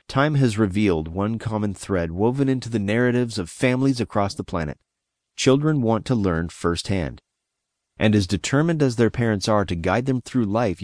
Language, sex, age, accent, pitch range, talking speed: English, male, 30-49, American, 95-125 Hz, 175 wpm